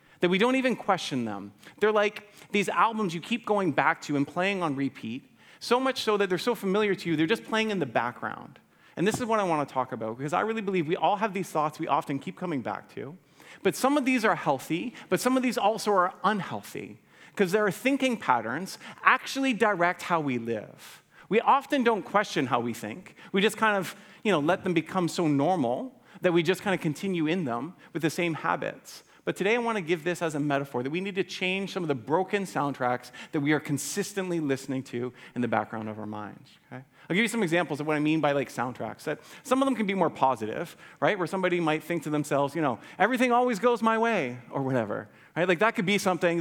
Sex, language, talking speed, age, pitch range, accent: male, English, 240 wpm, 30-49, 140-210 Hz, American